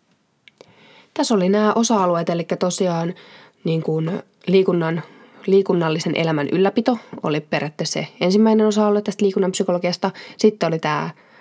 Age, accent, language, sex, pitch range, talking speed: 20-39, native, Finnish, female, 165-210 Hz, 115 wpm